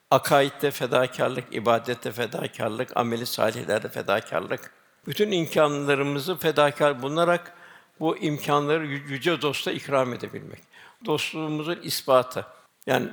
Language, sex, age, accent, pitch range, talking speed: Turkish, male, 60-79, native, 140-165 Hz, 90 wpm